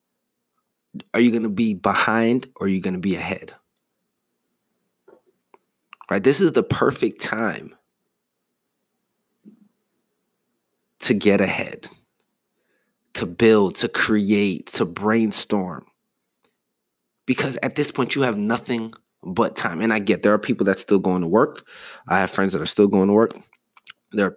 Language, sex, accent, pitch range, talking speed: English, male, American, 100-140 Hz, 145 wpm